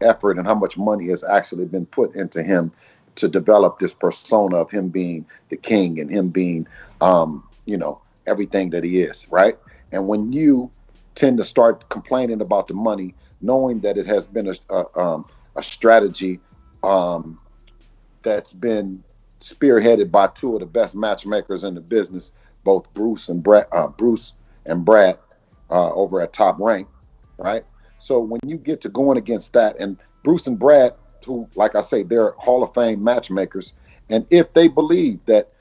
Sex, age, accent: male, 50-69, American